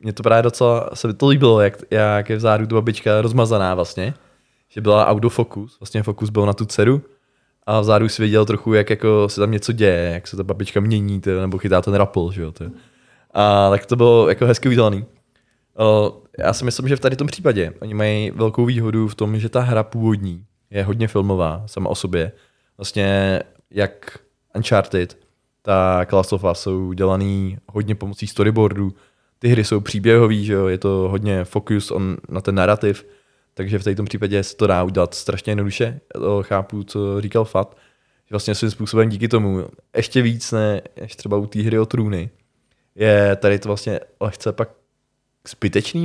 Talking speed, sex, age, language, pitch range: 180 wpm, male, 20-39, Czech, 100-115 Hz